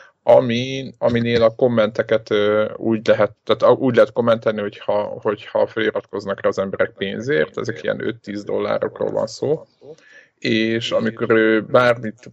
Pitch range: 105-125 Hz